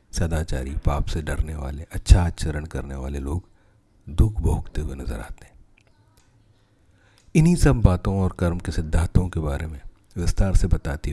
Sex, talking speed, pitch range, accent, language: male, 155 wpm, 85-105 Hz, native, Hindi